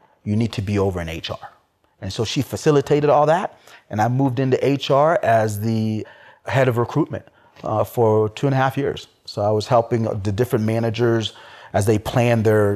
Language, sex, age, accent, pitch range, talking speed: English, male, 30-49, American, 110-140 Hz, 195 wpm